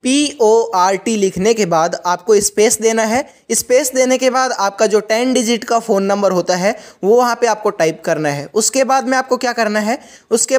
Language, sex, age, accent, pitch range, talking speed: Hindi, male, 20-39, native, 210-250 Hz, 205 wpm